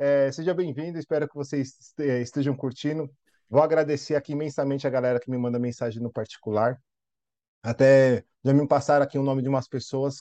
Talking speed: 170 wpm